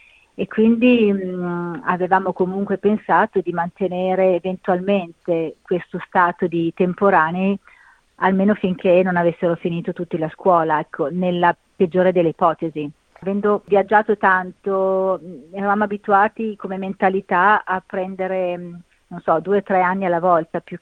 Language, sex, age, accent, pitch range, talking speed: Italian, female, 40-59, native, 170-190 Hz, 125 wpm